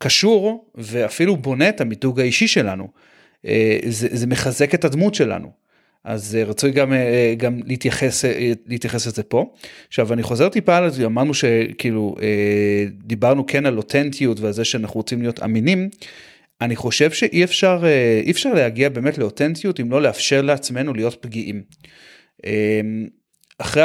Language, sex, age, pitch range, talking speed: Hebrew, male, 30-49, 115-150 Hz, 135 wpm